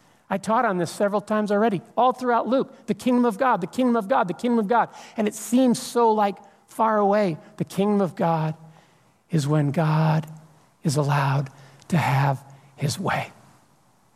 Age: 50-69